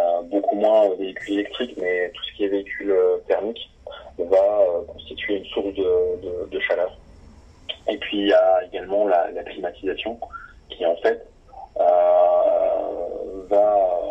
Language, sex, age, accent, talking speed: French, male, 30-49, French, 140 wpm